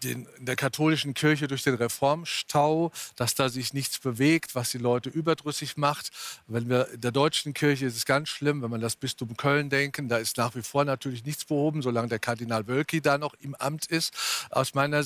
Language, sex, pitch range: German, male, 130-165 Hz